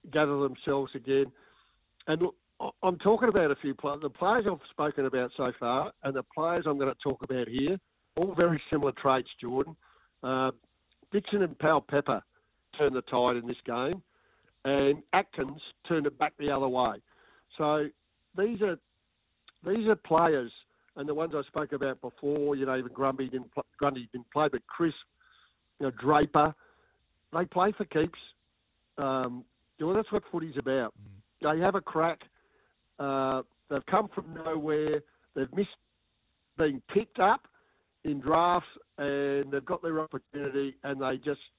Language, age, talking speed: English, 50-69, 160 wpm